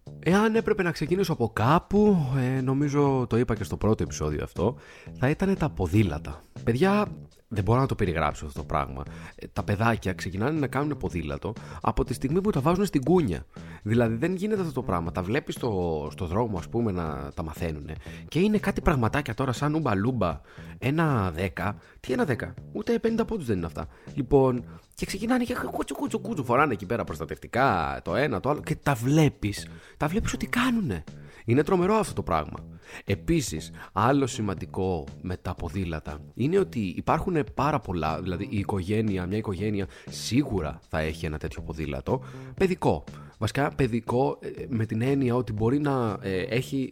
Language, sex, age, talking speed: Greek, male, 30-49, 170 wpm